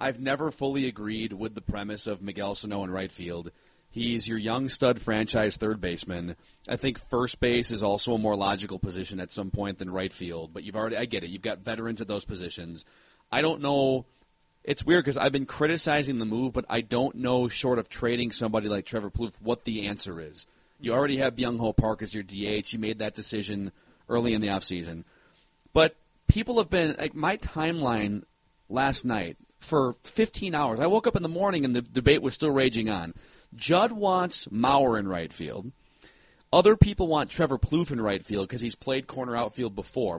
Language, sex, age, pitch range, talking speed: English, male, 30-49, 105-145 Hz, 205 wpm